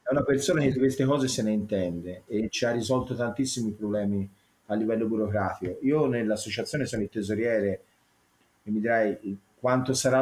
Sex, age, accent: male, 30-49, native